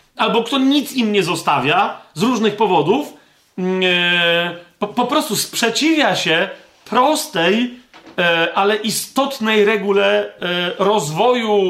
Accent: native